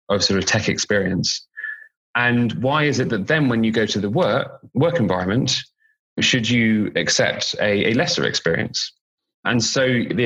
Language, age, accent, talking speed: English, 30-49, British, 170 wpm